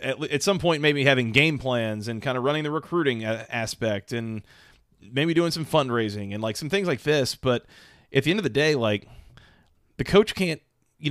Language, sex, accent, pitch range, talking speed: English, male, American, 115-155 Hz, 200 wpm